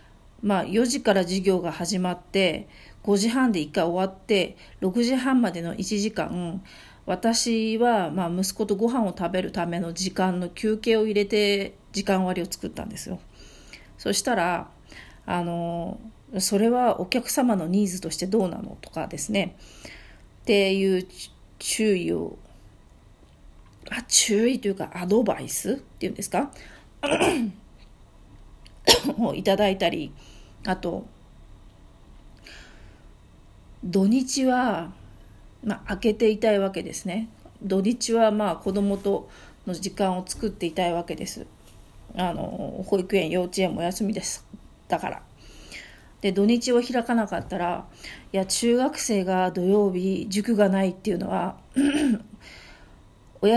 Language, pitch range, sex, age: Japanese, 180-220 Hz, female, 40-59